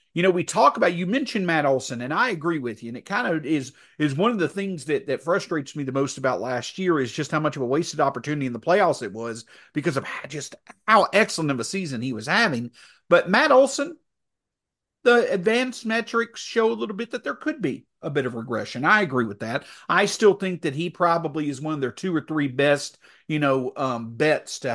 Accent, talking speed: American, 240 wpm